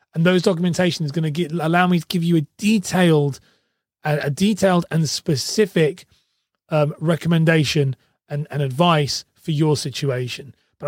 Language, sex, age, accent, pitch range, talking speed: English, male, 30-49, British, 150-180 Hz, 155 wpm